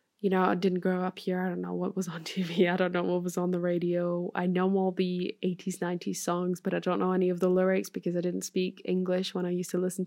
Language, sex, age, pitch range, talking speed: English, female, 10-29, 180-195 Hz, 280 wpm